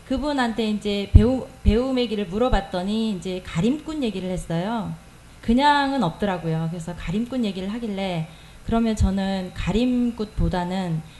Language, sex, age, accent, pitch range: Korean, female, 20-39, native, 180-250 Hz